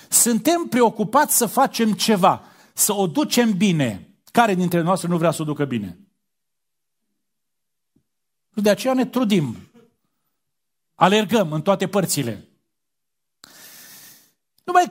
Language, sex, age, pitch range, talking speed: Romanian, male, 40-59, 185-255 Hz, 110 wpm